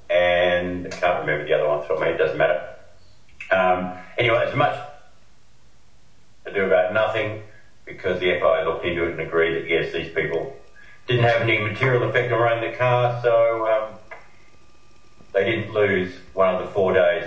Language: English